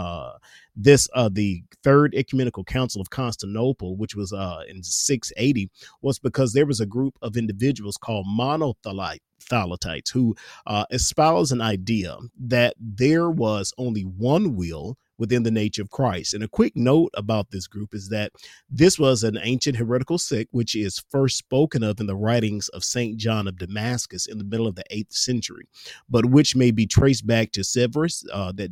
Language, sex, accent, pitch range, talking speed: English, male, American, 105-130 Hz, 180 wpm